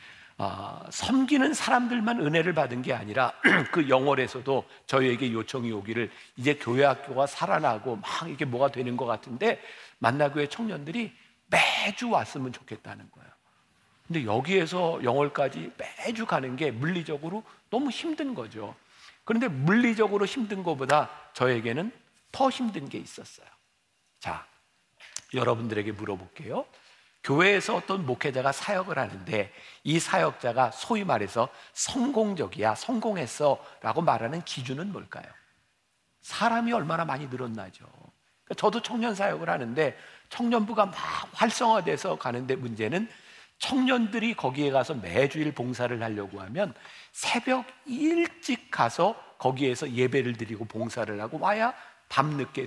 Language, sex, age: Korean, male, 50-69